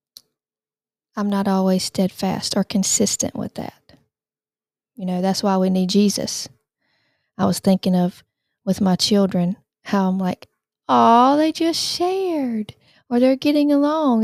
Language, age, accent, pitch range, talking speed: English, 40-59, American, 200-240 Hz, 140 wpm